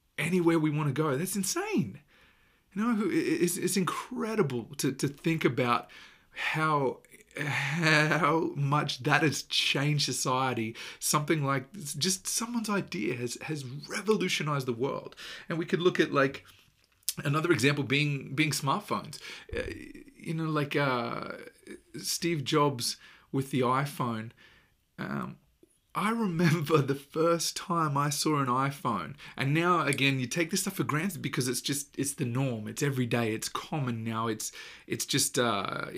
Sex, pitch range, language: male, 130-170 Hz, English